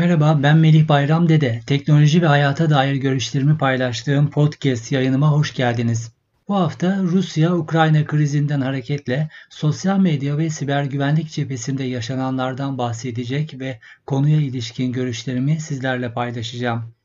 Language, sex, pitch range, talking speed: Turkish, male, 135-165 Hz, 120 wpm